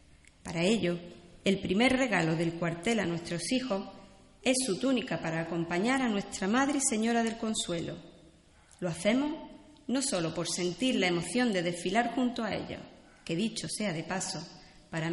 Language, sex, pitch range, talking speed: Spanish, female, 170-230 Hz, 165 wpm